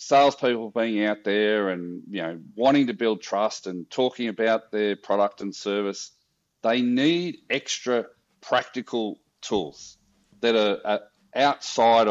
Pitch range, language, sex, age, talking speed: 105-120 Hz, English, male, 40-59, 130 wpm